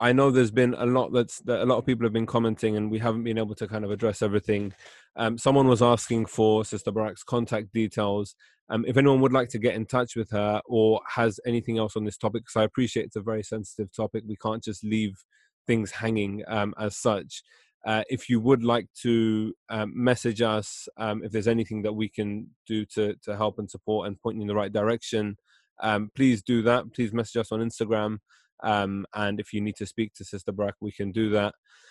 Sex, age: male, 20-39